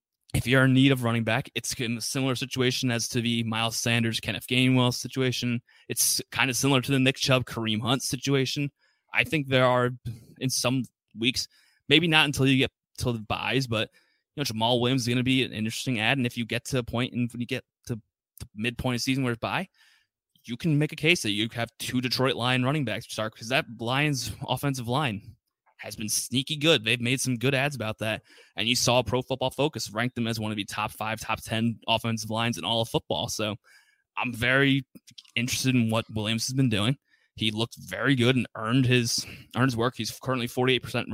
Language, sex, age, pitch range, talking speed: English, male, 20-39, 110-130 Hz, 220 wpm